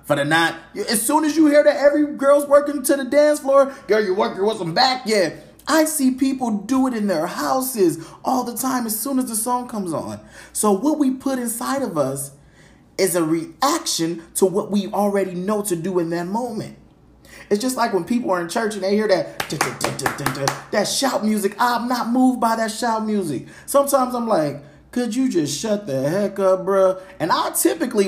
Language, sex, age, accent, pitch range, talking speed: English, male, 20-39, American, 150-245 Hz, 205 wpm